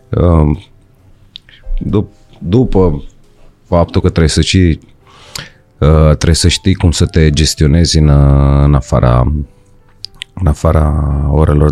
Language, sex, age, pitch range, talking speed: Romanian, male, 30-49, 70-95 Hz, 115 wpm